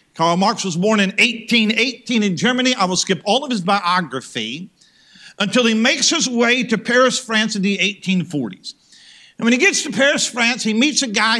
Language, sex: English, male